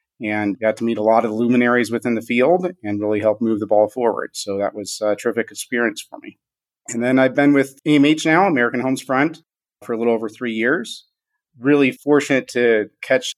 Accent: American